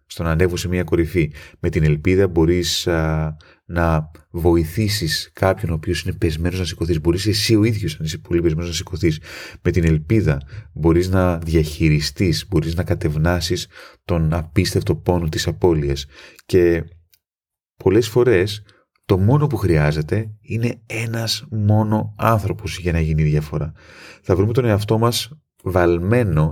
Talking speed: 145 wpm